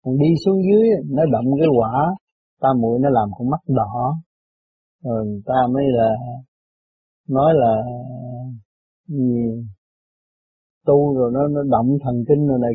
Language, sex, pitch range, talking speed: Vietnamese, male, 125-165 Hz, 145 wpm